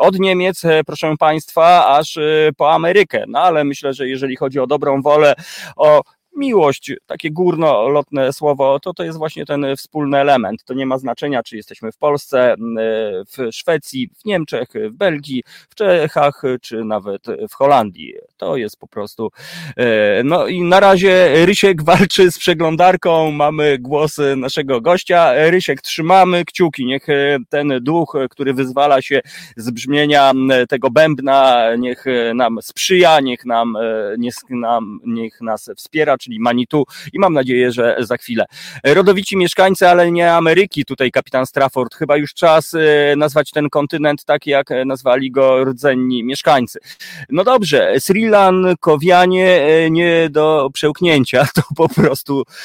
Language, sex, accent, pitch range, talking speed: Polish, male, native, 135-175 Hz, 140 wpm